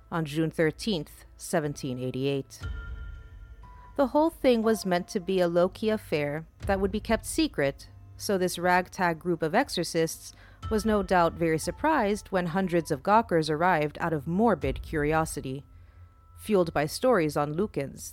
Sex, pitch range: female, 145-190 Hz